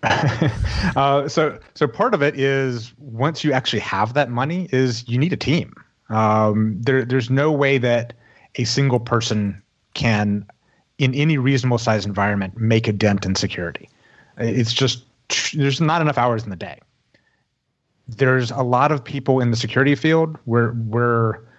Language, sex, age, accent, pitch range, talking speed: English, male, 30-49, American, 110-135 Hz, 160 wpm